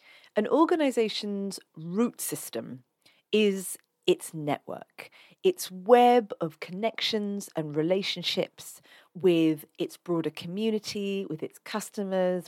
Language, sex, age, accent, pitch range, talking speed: English, female, 40-59, British, 170-230 Hz, 95 wpm